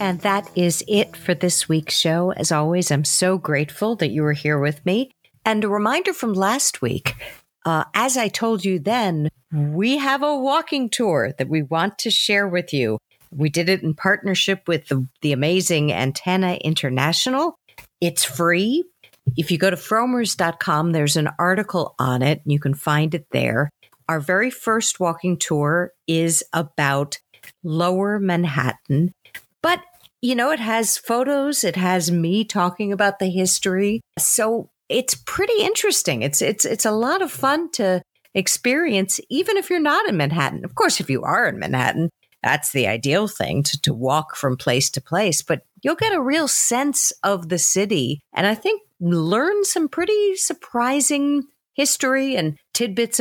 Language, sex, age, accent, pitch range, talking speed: English, female, 50-69, American, 155-235 Hz, 170 wpm